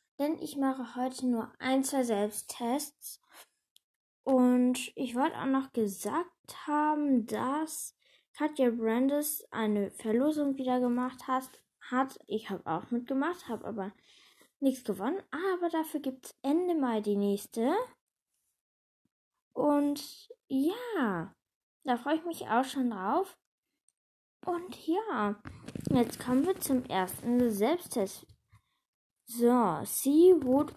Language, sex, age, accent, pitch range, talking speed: German, female, 10-29, German, 220-295 Hz, 115 wpm